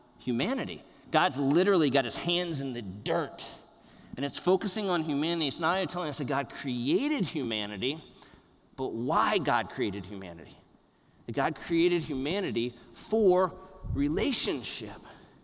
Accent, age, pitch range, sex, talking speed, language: American, 40-59, 125-170 Hz, male, 130 wpm, English